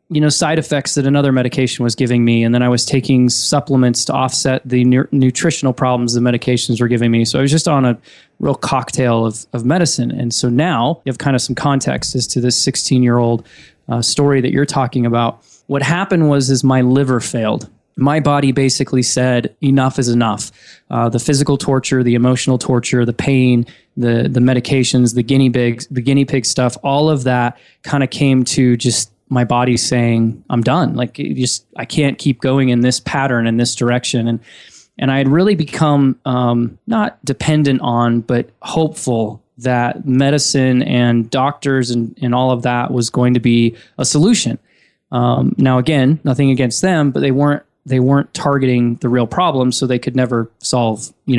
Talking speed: 195 wpm